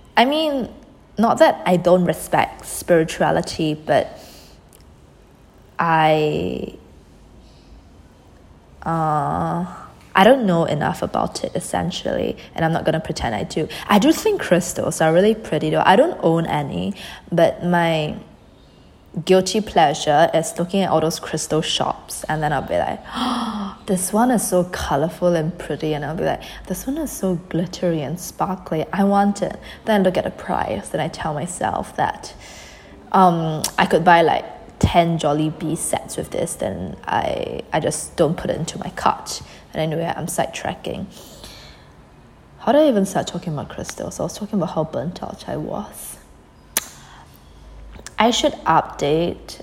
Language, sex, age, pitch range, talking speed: English, female, 20-39, 150-190 Hz, 160 wpm